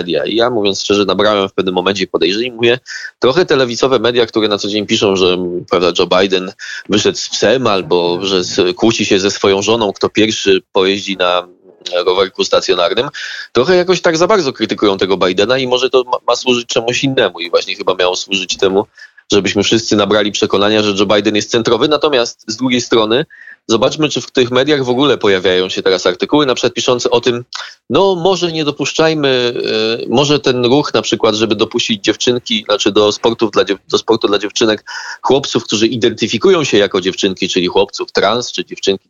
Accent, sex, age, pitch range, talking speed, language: native, male, 20-39, 105-145 Hz, 185 wpm, Polish